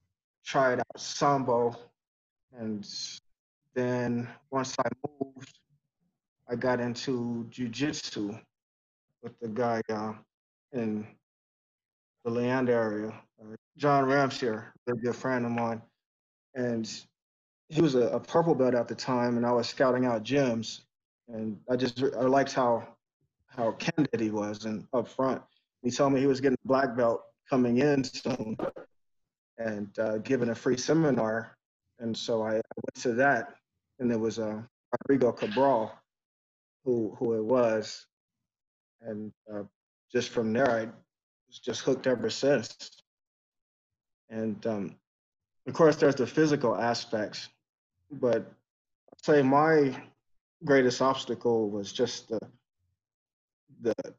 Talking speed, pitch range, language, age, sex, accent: 130 wpm, 110-135 Hz, English, 30-49, male, American